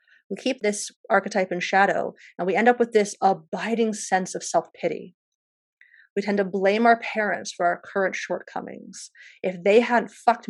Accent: American